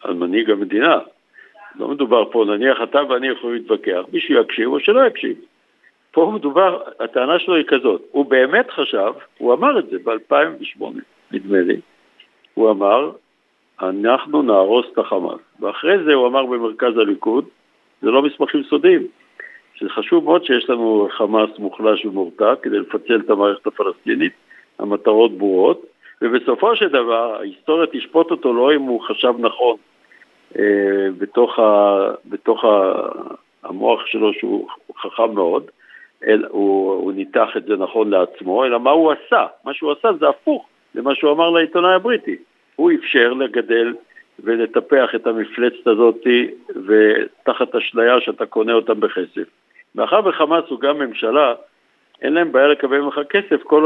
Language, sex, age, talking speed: Hebrew, male, 60-79, 145 wpm